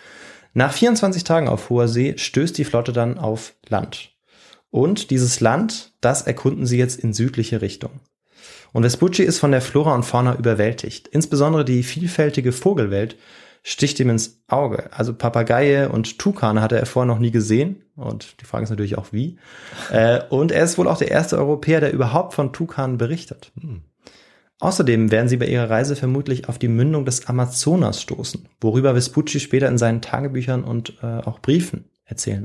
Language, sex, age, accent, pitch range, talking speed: German, male, 20-39, German, 115-150 Hz, 170 wpm